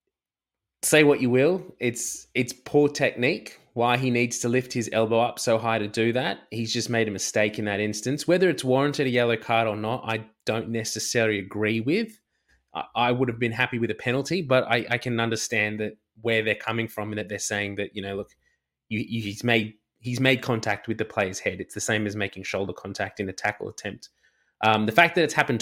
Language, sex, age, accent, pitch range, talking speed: English, male, 20-39, Australian, 110-125 Hz, 225 wpm